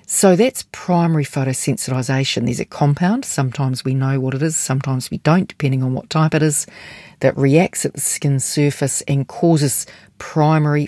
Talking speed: 170 wpm